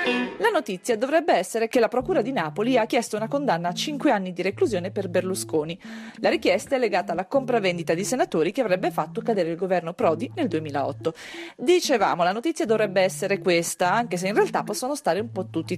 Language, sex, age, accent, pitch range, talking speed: Italian, female, 40-59, native, 175-270 Hz, 200 wpm